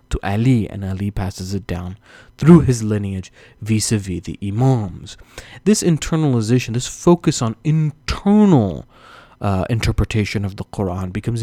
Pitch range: 100-130 Hz